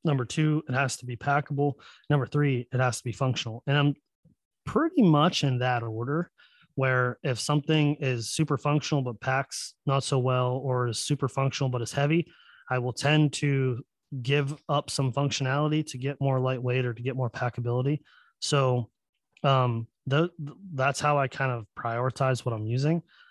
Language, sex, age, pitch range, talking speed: English, male, 20-39, 125-145 Hz, 170 wpm